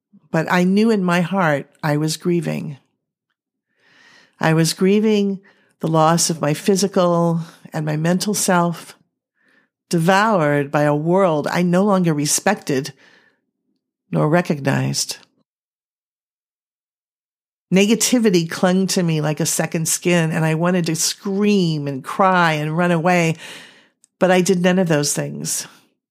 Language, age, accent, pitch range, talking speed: English, 50-69, American, 155-185 Hz, 130 wpm